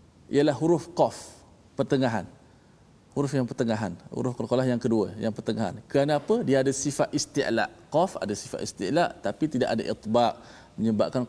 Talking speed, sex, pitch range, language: 145 wpm, male, 100-135 Hz, Malayalam